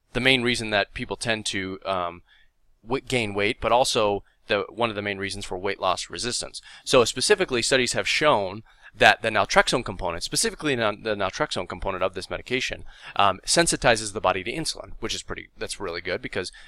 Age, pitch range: 20-39, 95-125 Hz